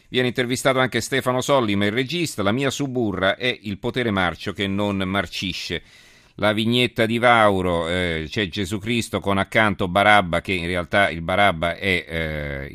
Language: Italian